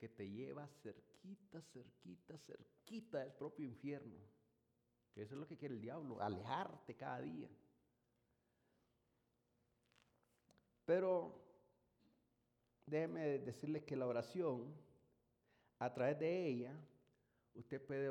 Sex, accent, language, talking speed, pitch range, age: male, Mexican, English, 105 wpm, 120-150 Hz, 50-69